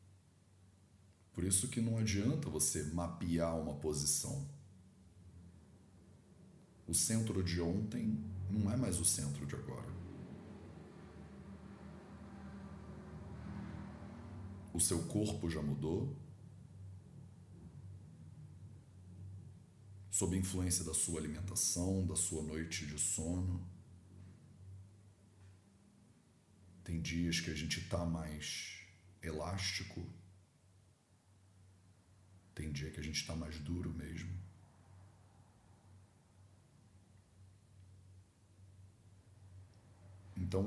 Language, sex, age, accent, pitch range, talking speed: English, male, 40-59, Brazilian, 90-100 Hz, 80 wpm